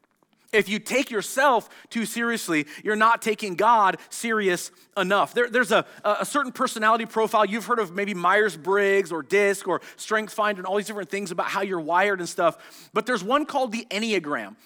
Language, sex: English, male